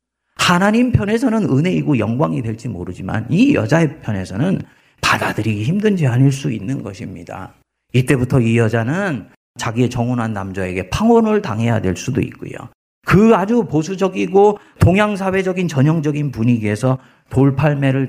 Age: 40-59